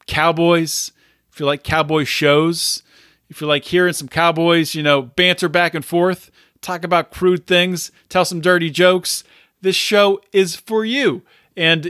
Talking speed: 160 wpm